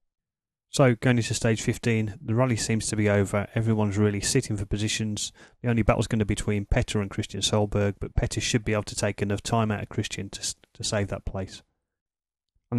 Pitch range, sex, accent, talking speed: 105-120 Hz, male, British, 210 wpm